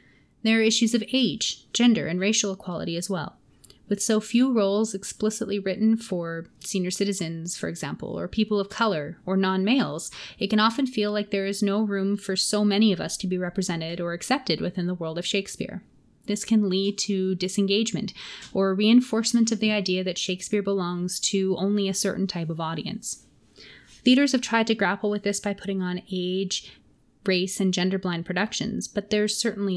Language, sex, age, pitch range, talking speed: English, female, 20-39, 185-215 Hz, 180 wpm